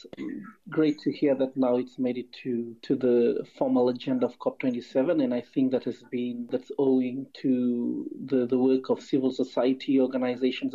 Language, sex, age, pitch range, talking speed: English, male, 40-59, 125-155 Hz, 175 wpm